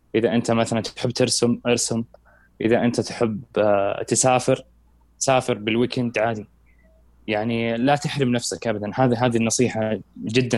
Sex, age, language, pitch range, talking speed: male, 20-39, Arabic, 100-125 Hz, 125 wpm